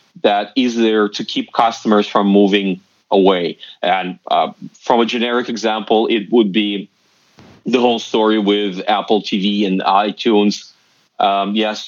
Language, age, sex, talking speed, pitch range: English, 30-49, male, 140 wpm, 100-110 Hz